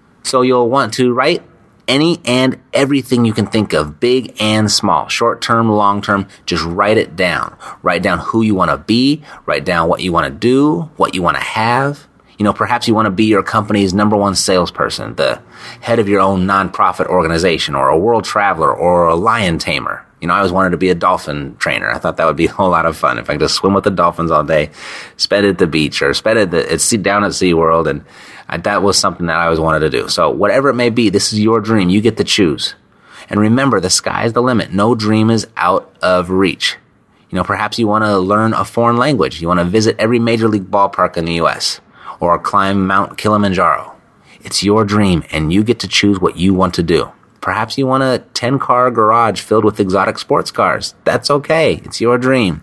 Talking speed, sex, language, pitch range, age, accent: 225 wpm, male, English, 95-120 Hz, 30-49, American